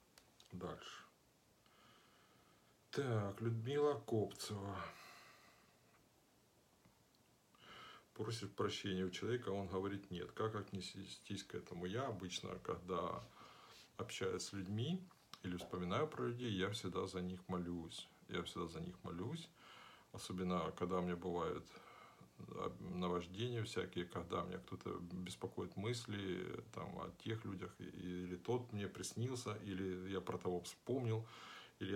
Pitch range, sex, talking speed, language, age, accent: 90-115 Hz, male, 115 wpm, Russian, 50-69, native